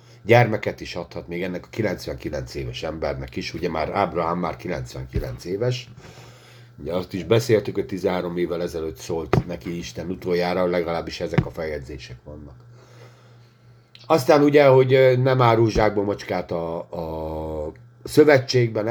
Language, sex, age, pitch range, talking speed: Hungarian, male, 50-69, 90-120 Hz, 135 wpm